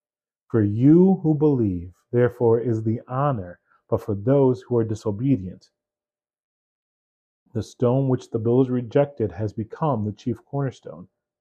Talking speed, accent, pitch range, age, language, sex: 130 wpm, American, 110-140 Hz, 30-49, English, male